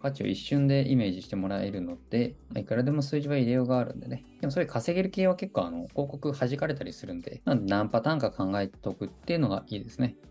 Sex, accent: male, native